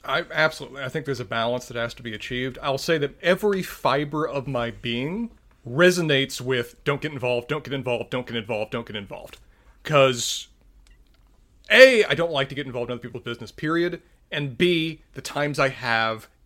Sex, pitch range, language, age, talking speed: male, 120-160 Hz, English, 30-49, 195 wpm